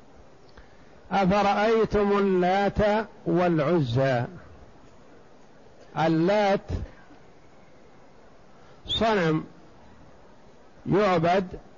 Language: Arabic